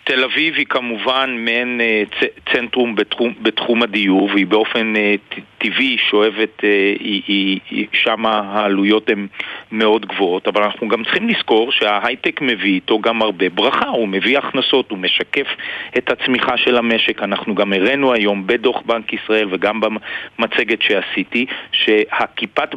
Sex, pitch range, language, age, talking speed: male, 105-125 Hz, Hebrew, 50-69, 145 wpm